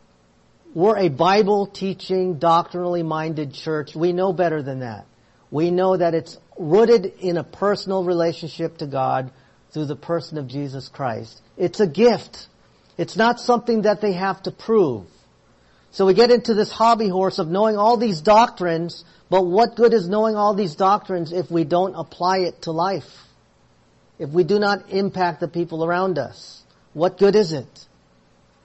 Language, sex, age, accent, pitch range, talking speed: English, male, 50-69, American, 140-195 Hz, 165 wpm